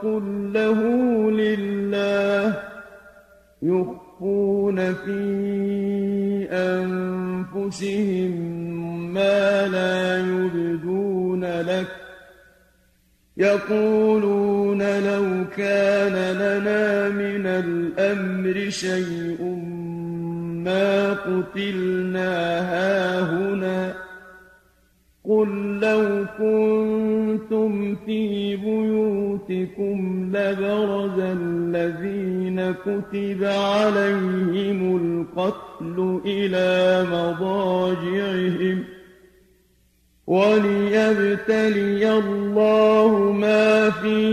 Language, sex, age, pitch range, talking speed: English, male, 40-59, 185-200 Hz, 50 wpm